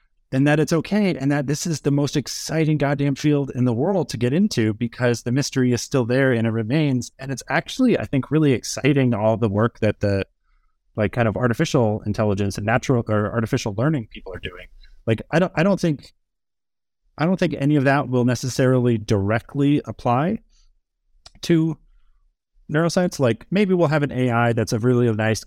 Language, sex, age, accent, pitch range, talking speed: English, male, 30-49, American, 110-145 Hz, 190 wpm